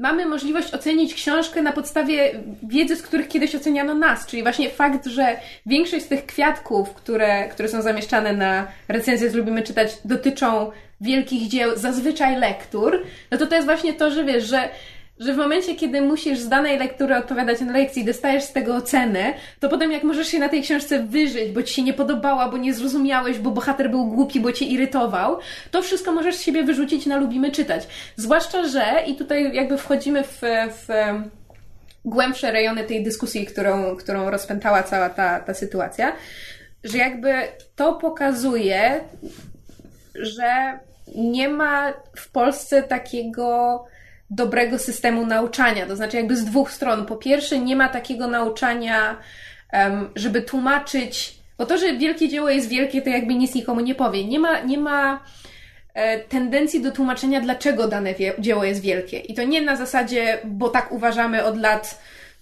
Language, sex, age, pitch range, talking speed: Polish, female, 20-39, 230-285 Hz, 165 wpm